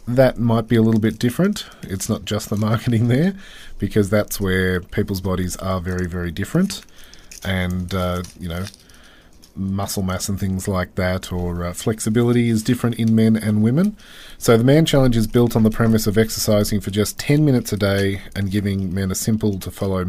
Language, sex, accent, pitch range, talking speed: English, male, Australian, 95-115 Hz, 195 wpm